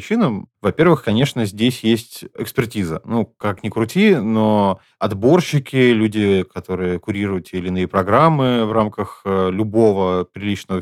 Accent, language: native, Russian